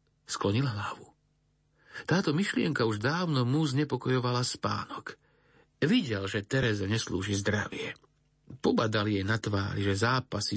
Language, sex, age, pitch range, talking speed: Slovak, male, 50-69, 110-135 Hz, 115 wpm